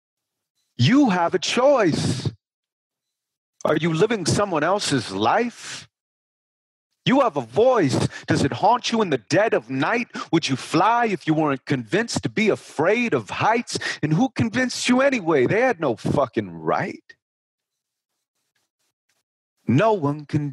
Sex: male